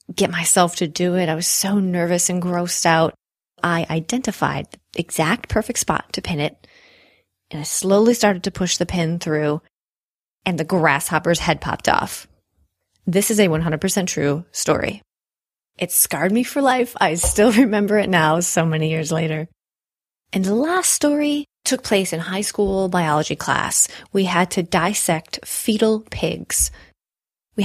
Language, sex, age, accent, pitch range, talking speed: English, female, 30-49, American, 160-215 Hz, 160 wpm